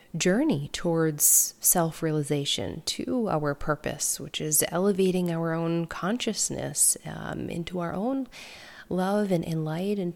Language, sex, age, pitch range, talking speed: English, female, 30-49, 155-205 Hz, 125 wpm